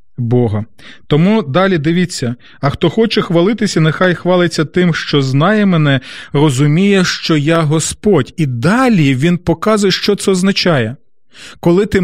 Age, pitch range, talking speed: 30-49, 135-180 Hz, 130 wpm